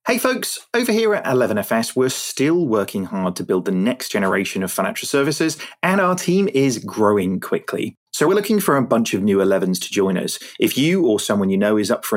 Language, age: English, 30-49